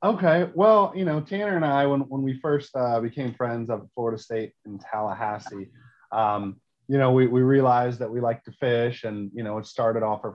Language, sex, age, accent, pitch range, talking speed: English, male, 30-49, American, 110-135 Hz, 215 wpm